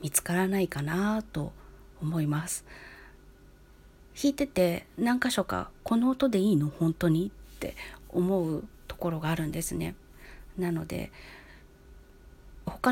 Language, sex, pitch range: Japanese, female, 155-200 Hz